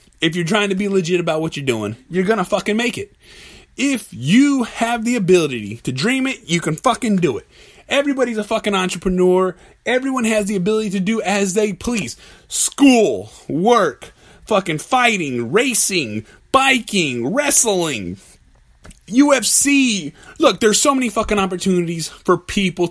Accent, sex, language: American, male, English